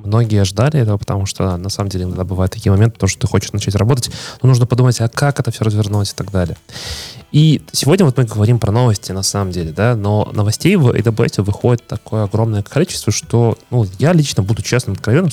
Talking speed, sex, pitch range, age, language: 210 wpm, male, 100-125 Hz, 20-39, Russian